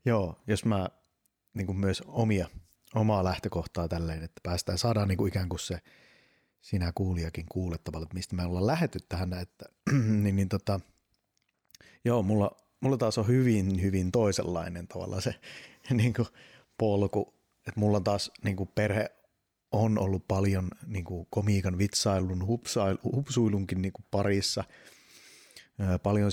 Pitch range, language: 95-110 Hz, Finnish